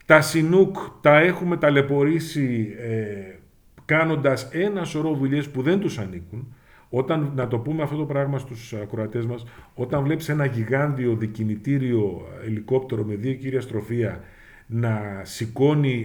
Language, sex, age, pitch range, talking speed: Greek, male, 50-69, 115-150 Hz, 125 wpm